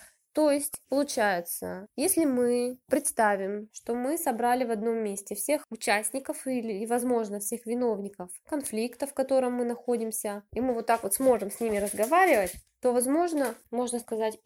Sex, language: female, Russian